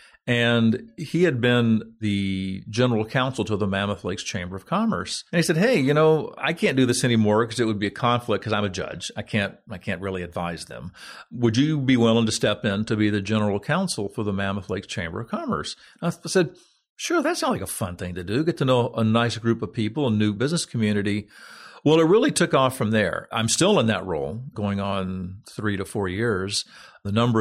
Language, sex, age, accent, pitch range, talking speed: English, male, 50-69, American, 100-125 Hz, 230 wpm